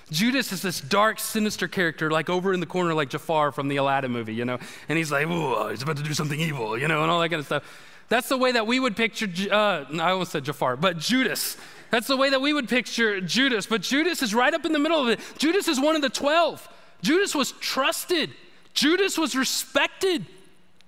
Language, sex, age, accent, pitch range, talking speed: English, male, 30-49, American, 165-270 Hz, 235 wpm